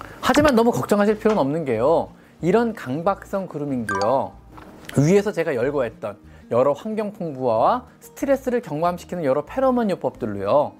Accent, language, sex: native, Korean, male